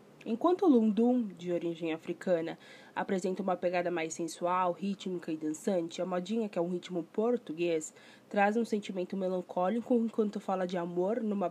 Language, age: Portuguese, 20-39